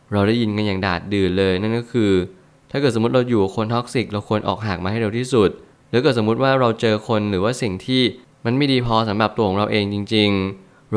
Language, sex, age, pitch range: Thai, male, 20-39, 100-115 Hz